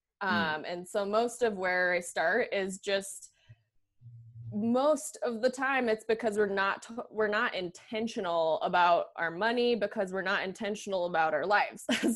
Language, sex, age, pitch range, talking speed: English, female, 20-39, 185-235 Hz, 155 wpm